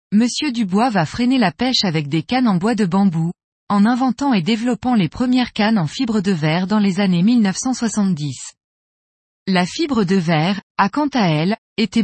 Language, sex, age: French, female, 20-39